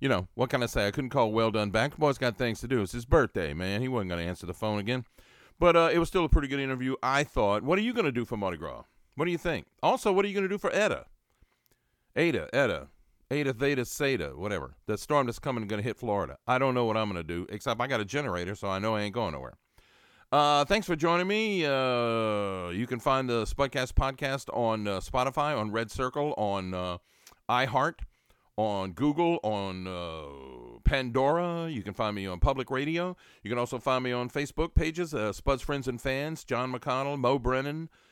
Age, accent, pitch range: 50-69, American, 105-145 Hz